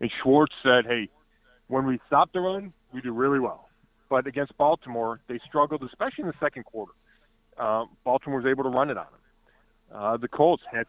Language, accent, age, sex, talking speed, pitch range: English, American, 30-49, male, 200 wpm, 120-155 Hz